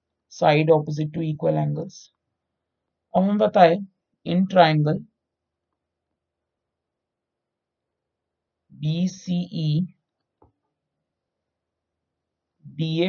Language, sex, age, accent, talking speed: Hindi, male, 50-69, native, 60 wpm